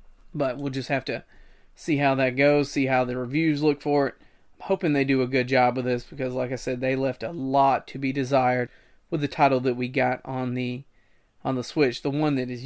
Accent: American